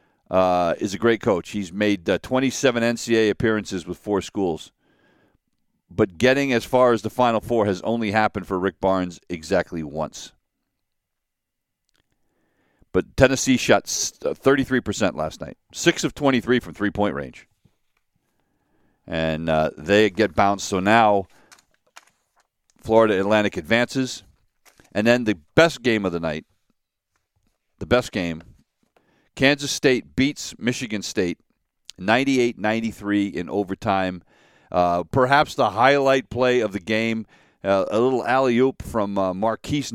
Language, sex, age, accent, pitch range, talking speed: English, male, 50-69, American, 95-120 Hz, 130 wpm